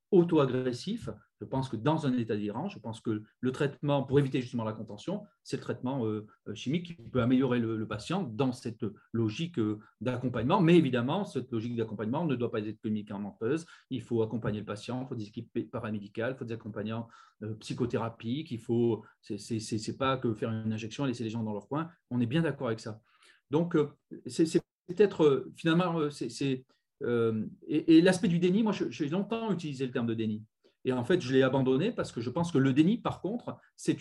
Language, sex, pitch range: French, male, 115-155 Hz